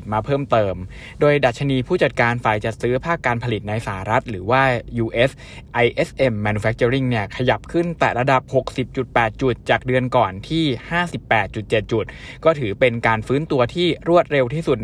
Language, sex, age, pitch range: Thai, male, 20-39, 115-140 Hz